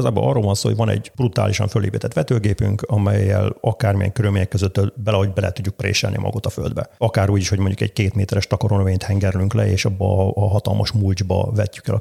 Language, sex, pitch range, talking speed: Hungarian, male, 100-115 Hz, 200 wpm